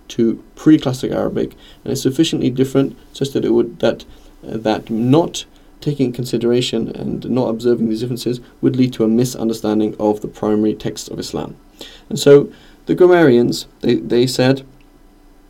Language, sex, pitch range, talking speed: English, male, 110-130 Hz, 155 wpm